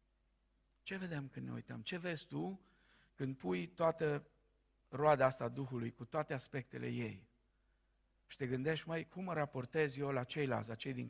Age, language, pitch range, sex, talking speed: 50-69, Romanian, 120-170 Hz, male, 170 wpm